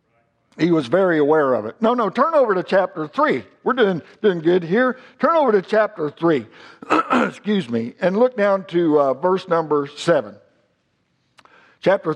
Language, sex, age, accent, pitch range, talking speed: English, male, 60-79, American, 160-220 Hz, 170 wpm